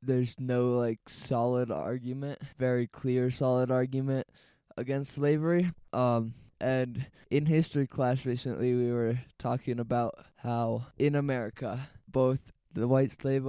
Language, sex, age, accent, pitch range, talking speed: English, male, 20-39, American, 120-135 Hz, 125 wpm